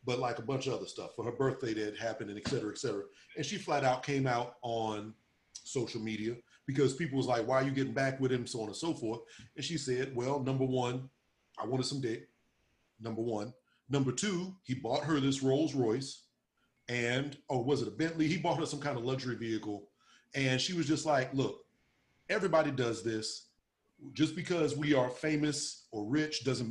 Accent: American